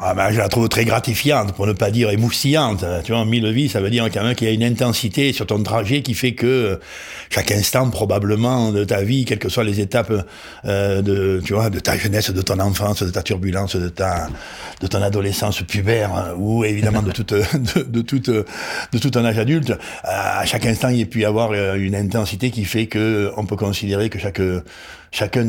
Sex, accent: male, French